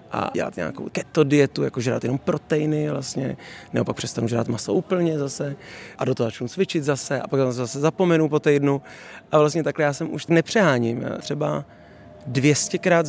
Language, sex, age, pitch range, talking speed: Czech, male, 30-49, 130-155 Hz, 170 wpm